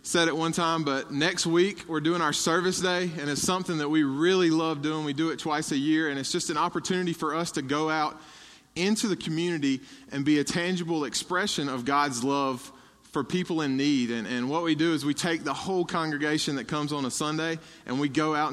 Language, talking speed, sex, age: English, 230 wpm, male, 20-39